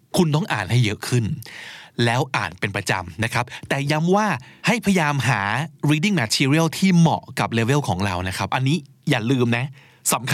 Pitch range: 120-160 Hz